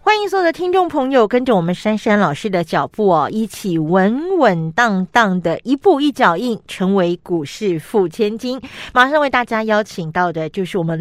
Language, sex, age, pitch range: Chinese, female, 40-59, 175-235 Hz